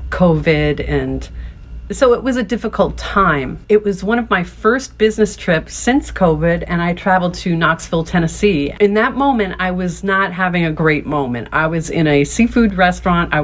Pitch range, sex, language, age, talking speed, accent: 150-185 Hz, female, English, 40-59, 185 wpm, American